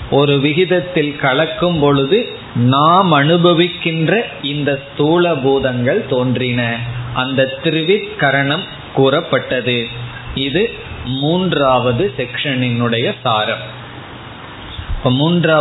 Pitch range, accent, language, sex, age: 130-165 Hz, native, Tamil, male, 30-49